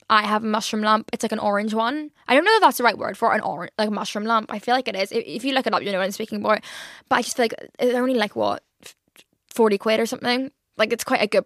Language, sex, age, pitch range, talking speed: English, female, 10-29, 210-255 Hz, 315 wpm